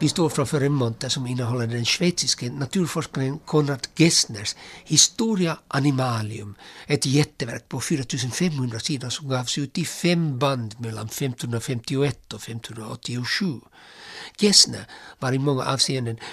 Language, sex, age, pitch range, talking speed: Swedish, male, 60-79, 120-160 Hz, 120 wpm